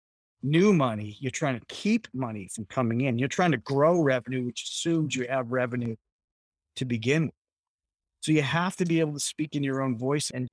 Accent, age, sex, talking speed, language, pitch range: American, 30-49, male, 205 wpm, English, 130-180 Hz